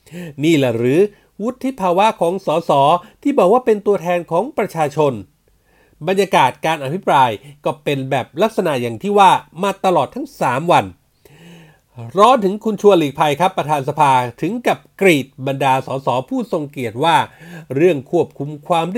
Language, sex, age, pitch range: Thai, male, 30-49, 150-205 Hz